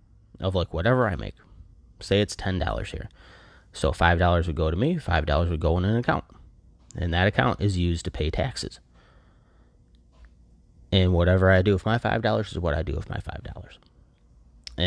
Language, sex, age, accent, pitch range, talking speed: English, male, 30-49, American, 85-100 Hz, 175 wpm